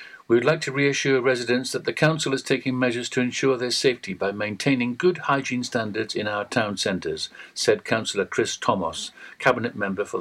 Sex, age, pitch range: male, 60-79, 120-155 Hz